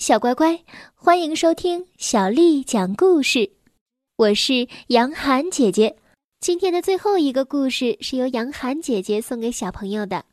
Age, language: 10-29, Chinese